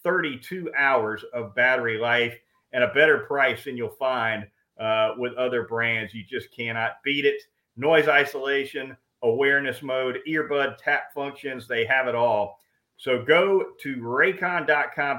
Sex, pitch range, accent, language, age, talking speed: male, 125-155 Hz, American, English, 40-59, 140 wpm